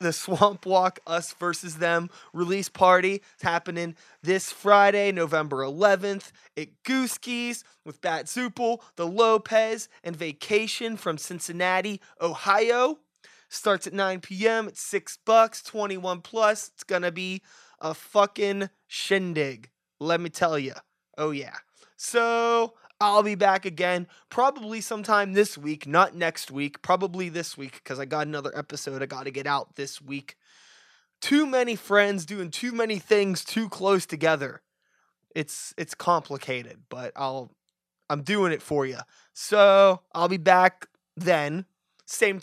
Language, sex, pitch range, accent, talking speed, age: English, male, 160-215 Hz, American, 145 wpm, 20-39